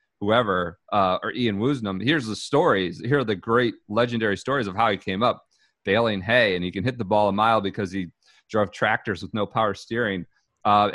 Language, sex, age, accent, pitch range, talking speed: English, male, 30-49, American, 95-115 Hz, 210 wpm